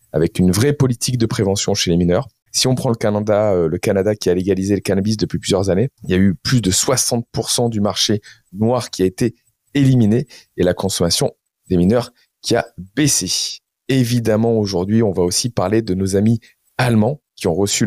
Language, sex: French, male